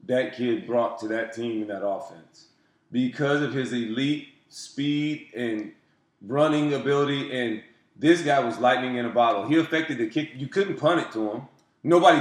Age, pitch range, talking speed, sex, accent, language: 30-49, 105-135 Hz, 175 wpm, male, American, English